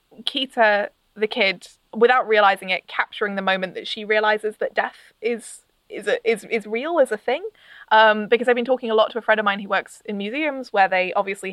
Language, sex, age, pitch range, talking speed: English, female, 20-39, 200-240 Hz, 220 wpm